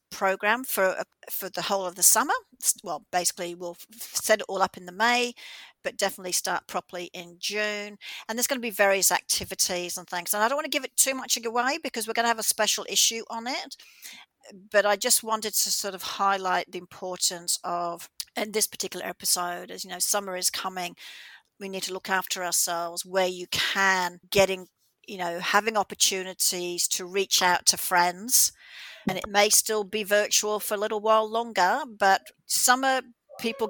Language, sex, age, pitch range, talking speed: English, female, 50-69, 185-220 Hz, 190 wpm